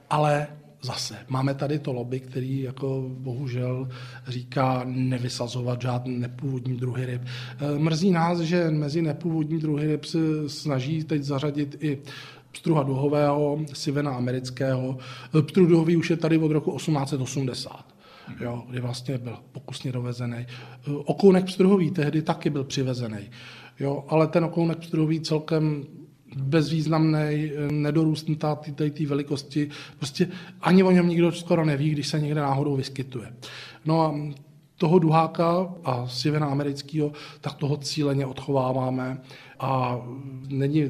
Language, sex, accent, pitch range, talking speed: Czech, male, native, 130-150 Hz, 125 wpm